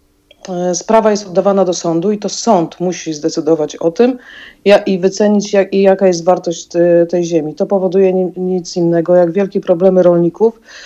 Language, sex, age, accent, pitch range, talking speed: Polish, female, 40-59, native, 175-195 Hz, 150 wpm